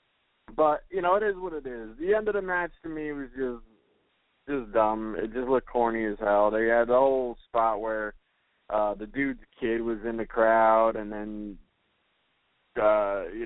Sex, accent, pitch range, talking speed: male, American, 105-120 Hz, 195 wpm